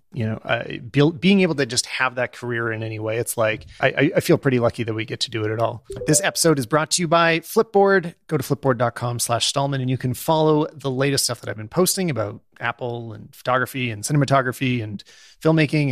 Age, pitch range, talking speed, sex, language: 30-49, 115-150 Hz, 225 wpm, male, English